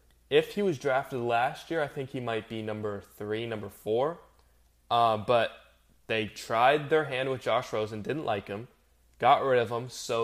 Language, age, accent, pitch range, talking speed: English, 10-29, American, 105-130 Hz, 190 wpm